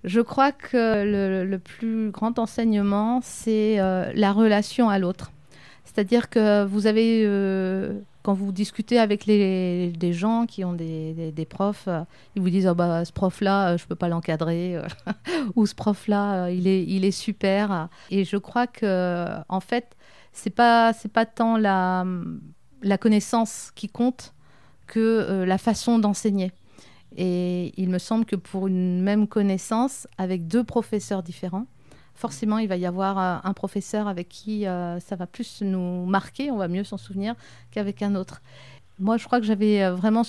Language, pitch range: French, 180-220 Hz